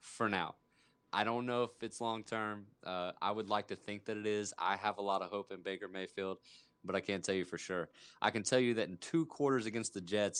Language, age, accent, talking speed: English, 20-39, American, 250 wpm